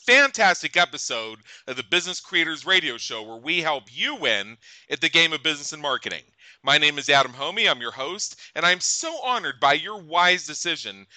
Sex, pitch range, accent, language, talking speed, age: male, 135-170 Hz, American, English, 195 wpm, 40-59